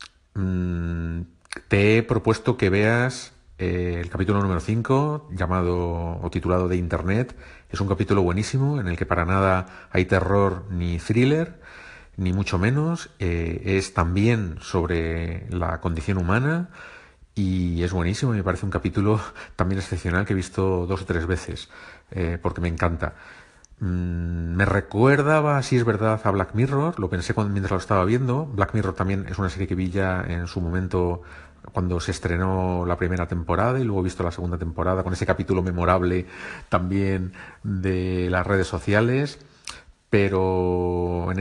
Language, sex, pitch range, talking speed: Spanish, male, 90-105 Hz, 155 wpm